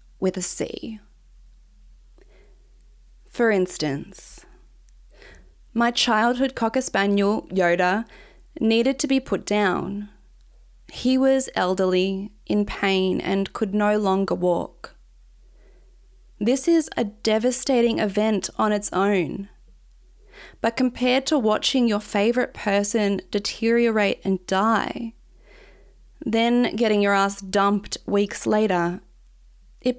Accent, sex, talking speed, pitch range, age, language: Australian, female, 100 wpm, 195-235 Hz, 20-39, English